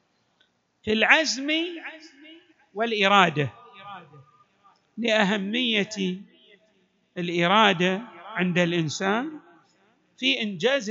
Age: 50-69